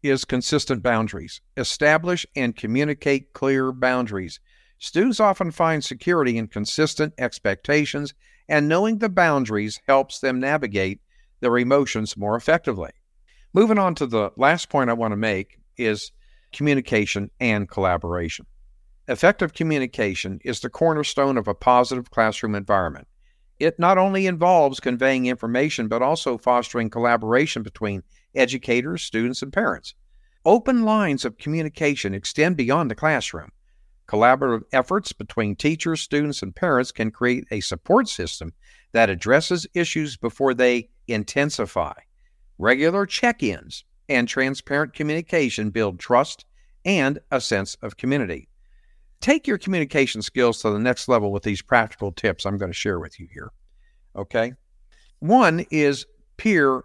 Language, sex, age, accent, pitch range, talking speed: English, male, 50-69, American, 110-155 Hz, 135 wpm